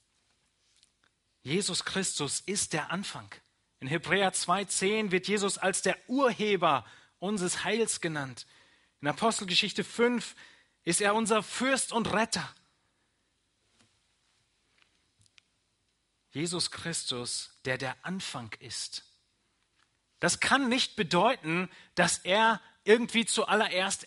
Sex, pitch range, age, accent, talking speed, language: male, 140-215 Hz, 30-49, German, 95 wpm, German